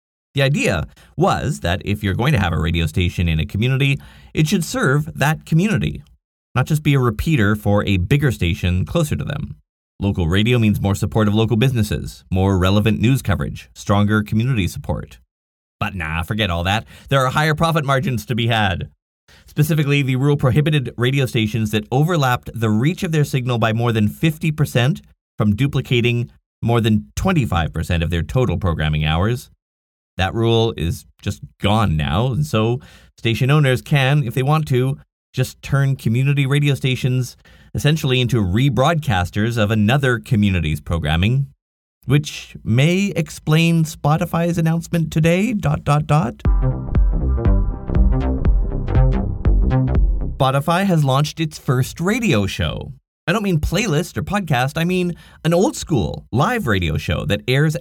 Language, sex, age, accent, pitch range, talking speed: English, male, 30-49, American, 90-145 Hz, 150 wpm